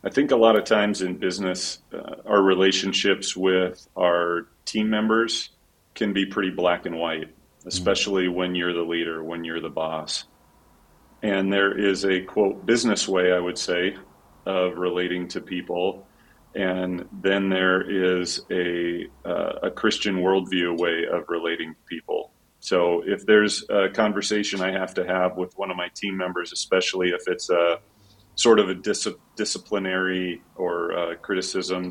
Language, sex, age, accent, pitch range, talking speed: English, male, 40-59, American, 90-100 Hz, 160 wpm